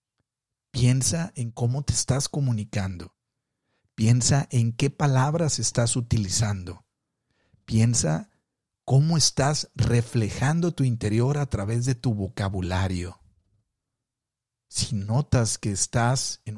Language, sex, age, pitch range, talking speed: Spanish, male, 50-69, 100-130 Hz, 100 wpm